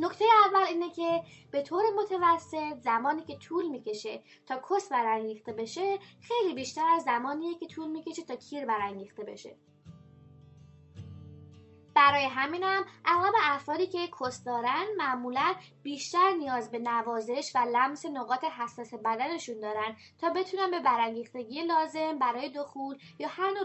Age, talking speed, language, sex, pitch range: 20-39, 135 wpm, English, female, 235-330 Hz